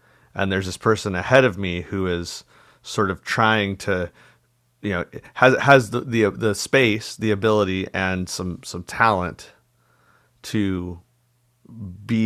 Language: English